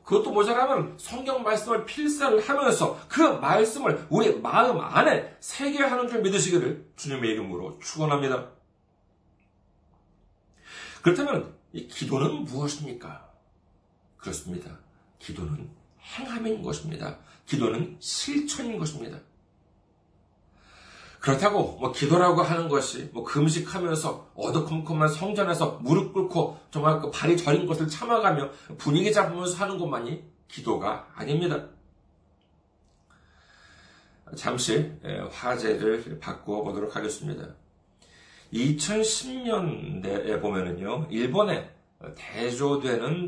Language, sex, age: Korean, male, 40-59